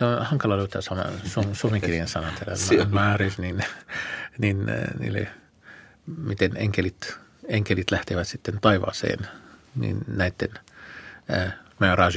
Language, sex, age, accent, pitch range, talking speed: Finnish, male, 50-69, native, 95-110 Hz, 110 wpm